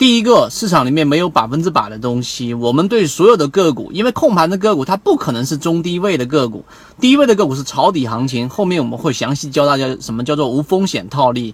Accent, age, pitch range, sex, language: native, 30-49, 125-170 Hz, male, Chinese